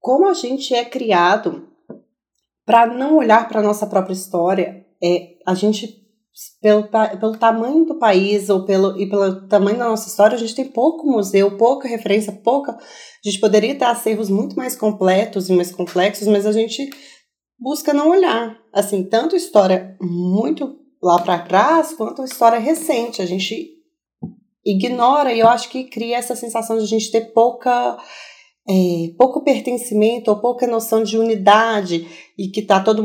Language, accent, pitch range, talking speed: Portuguese, Brazilian, 195-245 Hz, 160 wpm